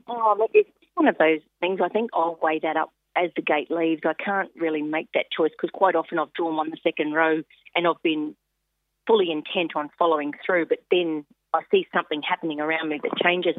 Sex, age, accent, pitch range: female, 40-59, Australian, 155-220 Hz